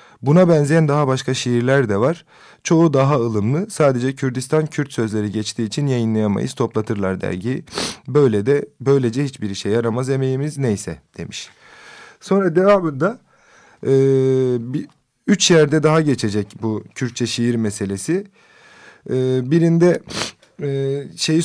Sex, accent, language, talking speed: male, native, Turkish, 110 wpm